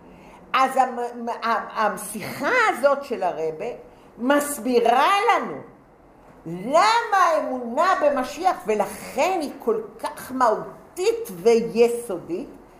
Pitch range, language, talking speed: 175-275 Hz, English, 75 wpm